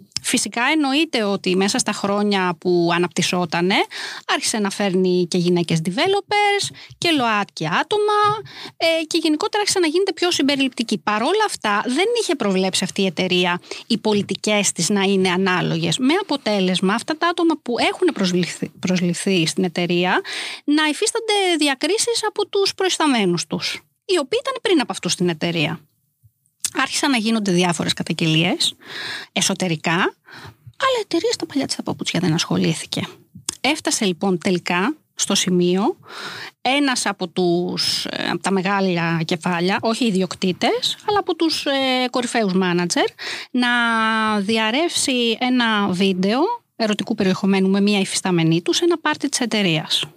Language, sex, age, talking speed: Greek, female, 20-39, 135 wpm